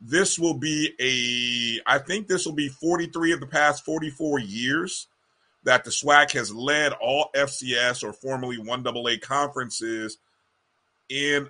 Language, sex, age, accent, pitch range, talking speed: English, male, 30-49, American, 130-155 Hz, 150 wpm